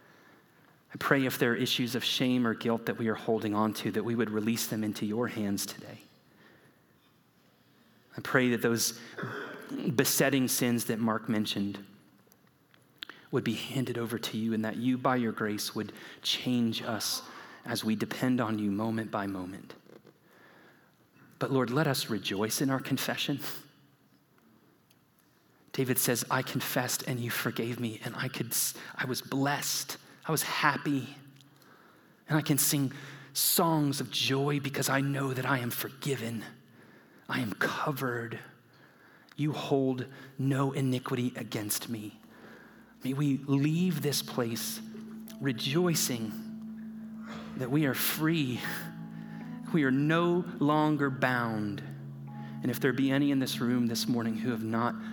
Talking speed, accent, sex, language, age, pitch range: 145 wpm, American, male, English, 30-49, 115-140 Hz